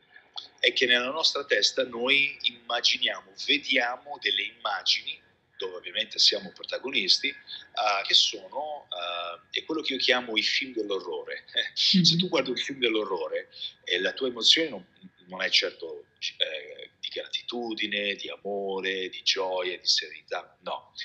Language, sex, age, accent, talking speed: Italian, male, 40-59, native, 145 wpm